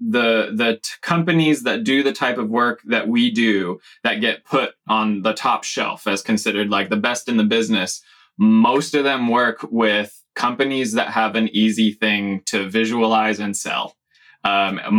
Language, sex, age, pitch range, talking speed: English, male, 20-39, 105-120 Hz, 175 wpm